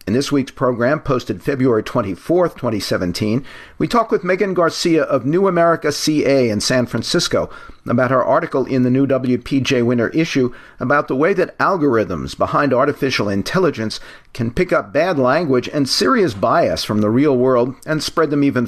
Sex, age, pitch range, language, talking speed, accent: male, 50-69, 120-155 Hz, English, 170 wpm, American